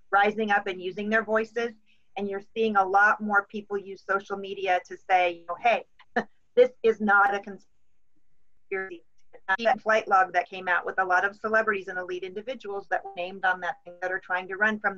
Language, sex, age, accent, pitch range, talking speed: English, female, 40-59, American, 190-225 Hz, 205 wpm